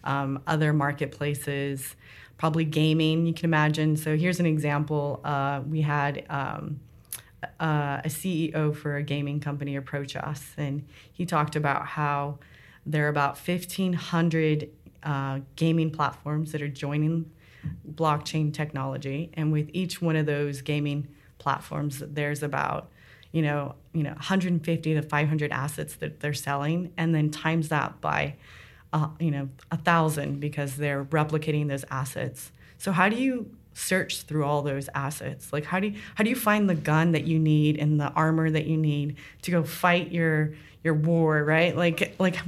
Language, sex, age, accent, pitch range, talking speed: English, female, 30-49, American, 145-165 Hz, 160 wpm